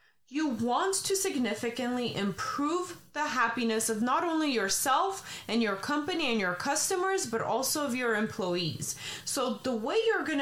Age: 30-49